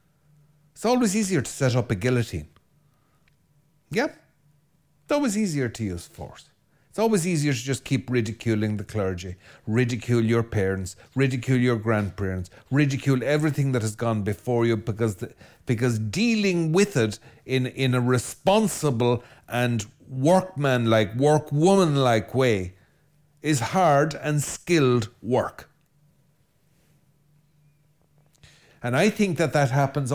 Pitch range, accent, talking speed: 125-155 Hz, Irish, 125 wpm